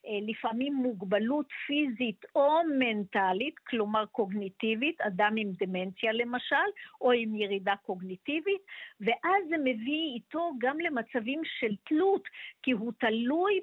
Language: Hebrew